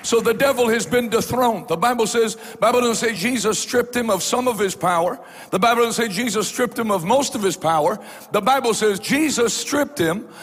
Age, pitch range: 60-79, 230-280 Hz